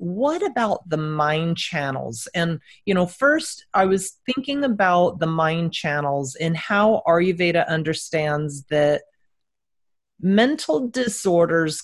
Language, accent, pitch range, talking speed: English, American, 155-210 Hz, 115 wpm